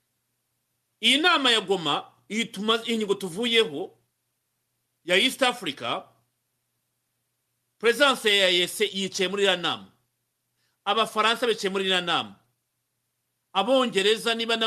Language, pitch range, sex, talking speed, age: English, 175-235 Hz, male, 90 wpm, 50-69